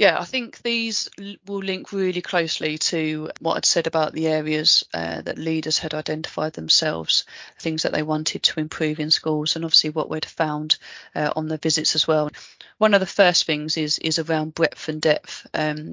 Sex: female